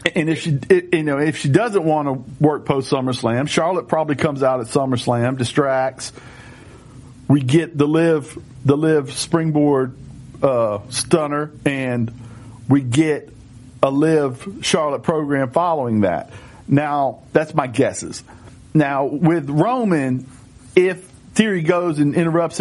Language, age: English, 50-69